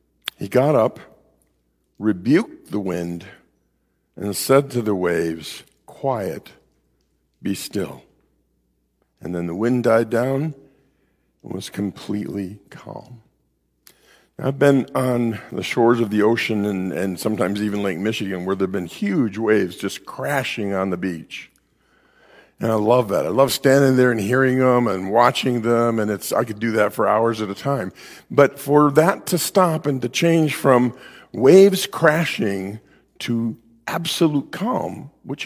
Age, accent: 50-69, American